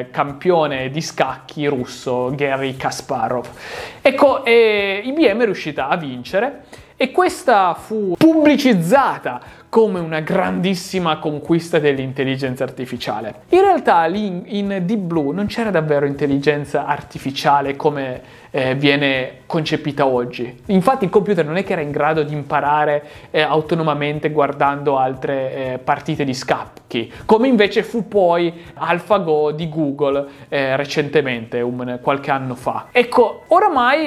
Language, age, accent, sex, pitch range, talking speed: Italian, 30-49, native, male, 145-205 Hz, 125 wpm